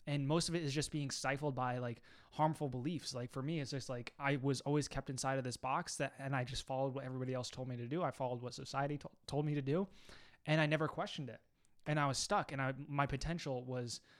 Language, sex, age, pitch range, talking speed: English, male, 20-39, 135-165 Hz, 255 wpm